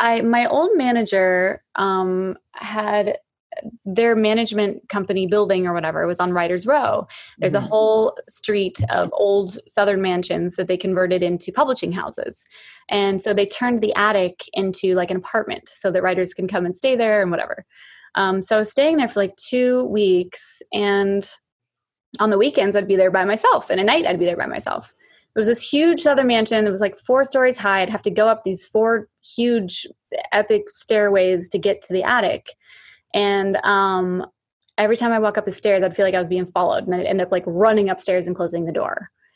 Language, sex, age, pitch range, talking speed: English, female, 20-39, 185-225 Hz, 200 wpm